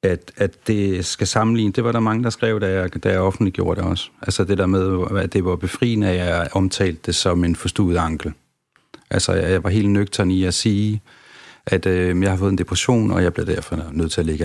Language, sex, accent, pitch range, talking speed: Danish, male, native, 90-110 Hz, 235 wpm